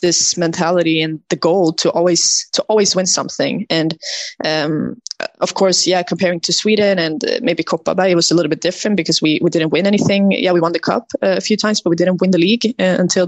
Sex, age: female, 20-39